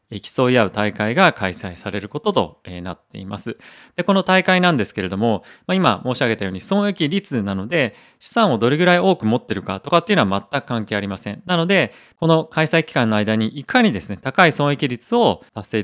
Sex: male